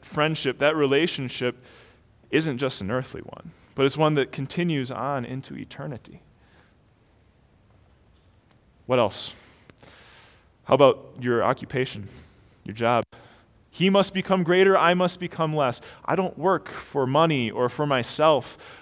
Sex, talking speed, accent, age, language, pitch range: male, 130 wpm, American, 20-39, English, 105-150 Hz